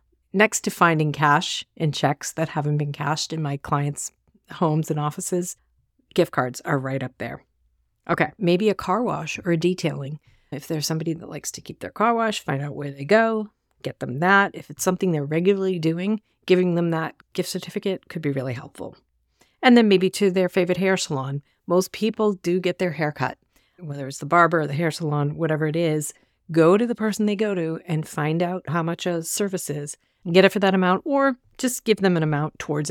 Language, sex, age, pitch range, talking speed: English, female, 40-59, 145-185 Hz, 210 wpm